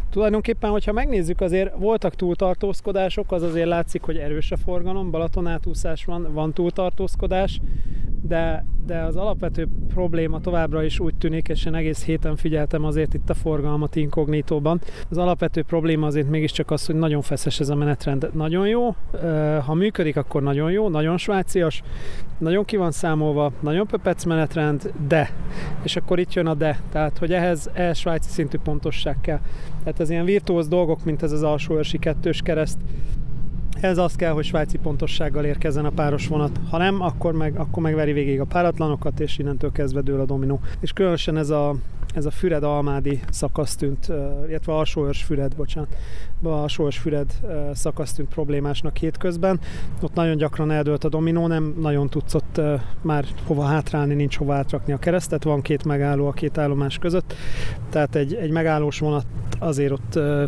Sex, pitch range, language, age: male, 145-170 Hz, Hungarian, 30-49